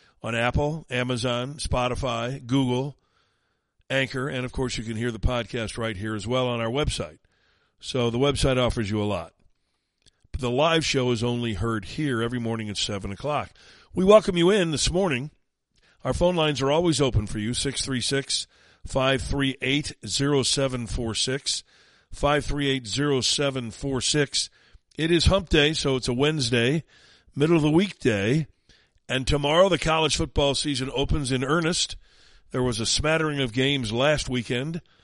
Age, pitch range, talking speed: 50-69, 120-145 Hz, 145 wpm